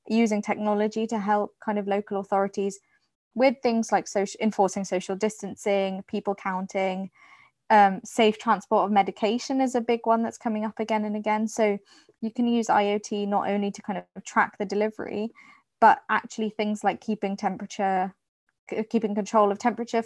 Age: 20-39